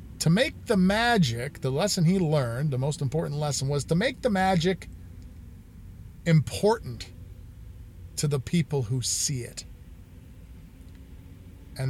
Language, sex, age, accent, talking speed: English, male, 40-59, American, 125 wpm